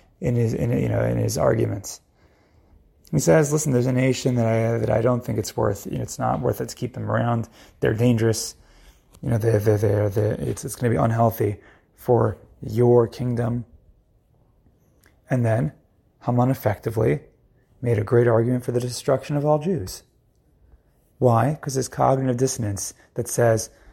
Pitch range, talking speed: 110-130 Hz, 175 wpm